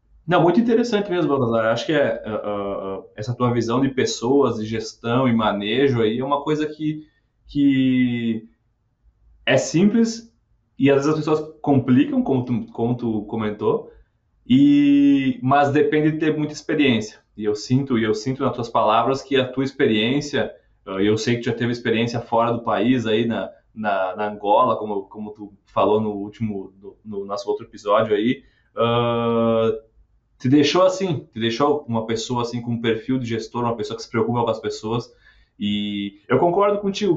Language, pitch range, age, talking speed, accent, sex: Portuguese, 110-150 Hz, 20-39, 180 wpm, Brazilian, male